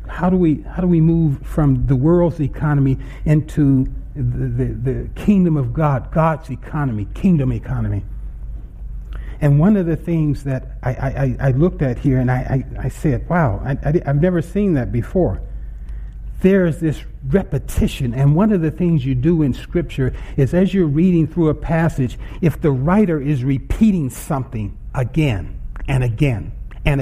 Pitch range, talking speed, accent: 125-185 Hz, 170 wpm, American